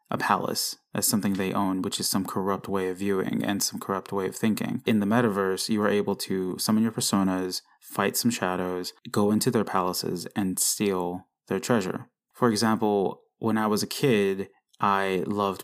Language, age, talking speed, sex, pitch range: English, 20-39, 190 wpm, male, 95-110 Hz